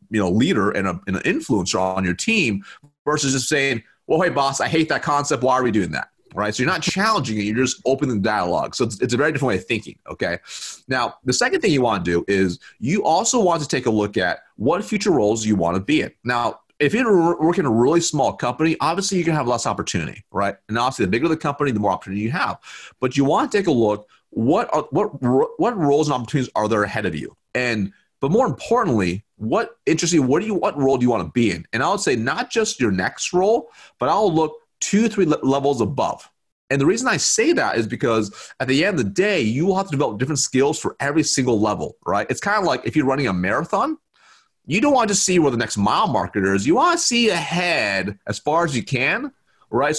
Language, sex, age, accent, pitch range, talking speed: English, male, 30-49, American, 110-170 Hz, 245 wpm